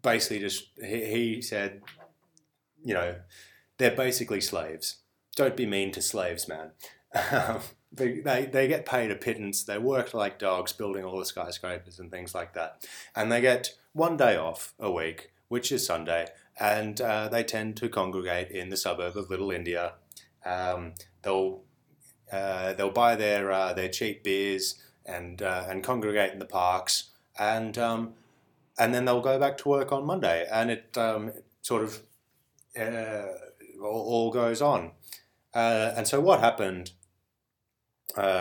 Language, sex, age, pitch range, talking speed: English, male, 20-39, 95-115 Hz, 155 wpm